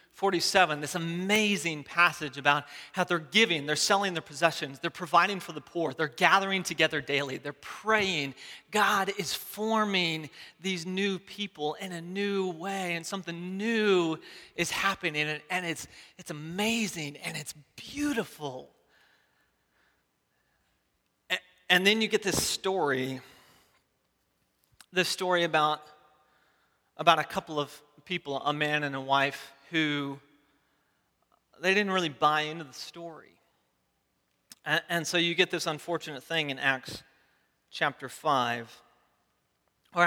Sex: male